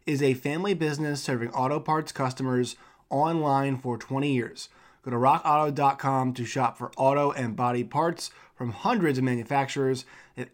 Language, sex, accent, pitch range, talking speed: English, male, American, 125-150 Hz, 155 wpm